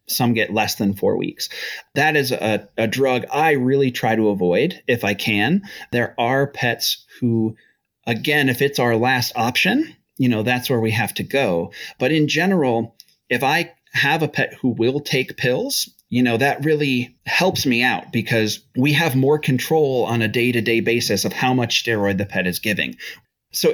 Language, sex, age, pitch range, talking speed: English, male, 30-49, 105-130 Hz, 185 wpm